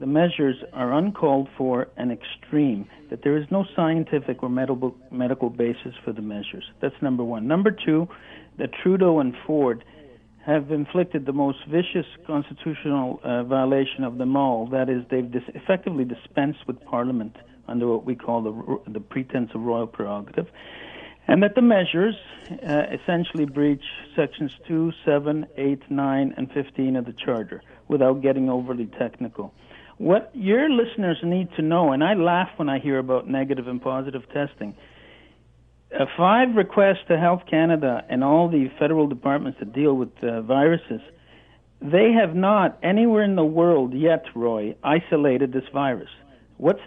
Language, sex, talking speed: English, male, 155 wpm